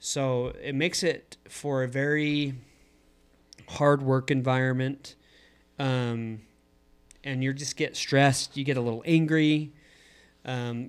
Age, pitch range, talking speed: 30-49, 125-145 Hz, 120 wpm